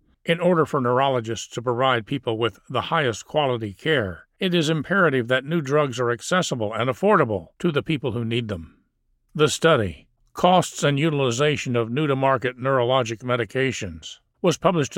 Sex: male